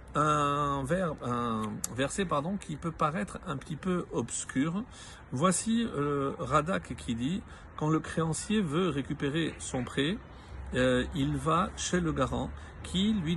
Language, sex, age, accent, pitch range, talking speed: French, male, 50-69, French, 130-175 Hz, 145 wpm